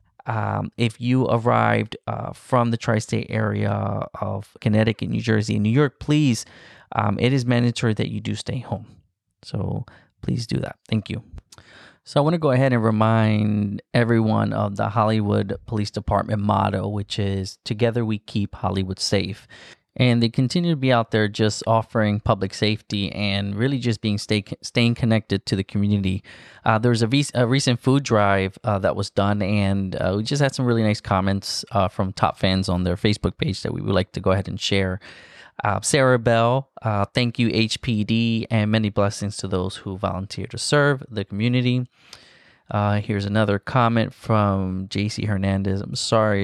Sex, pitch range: male, 100-120 Hz